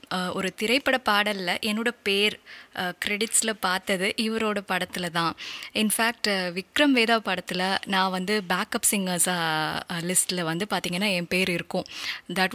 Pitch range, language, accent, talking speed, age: 180-215 Hz, Tamil, native, 120 wpm, 20-39